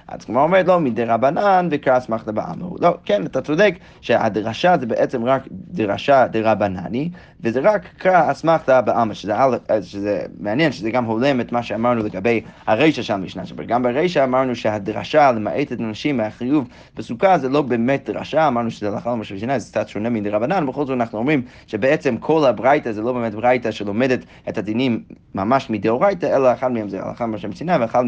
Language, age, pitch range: Hebrew, 30-49, 110-150 Hz